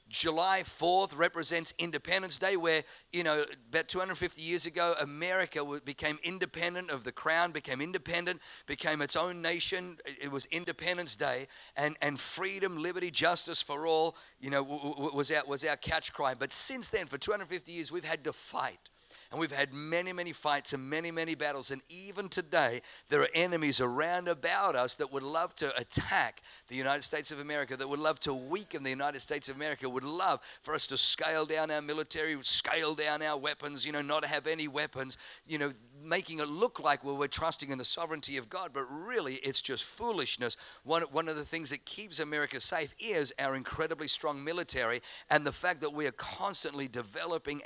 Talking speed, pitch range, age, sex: 190 wpm, 140-170 Hz, 50-69, male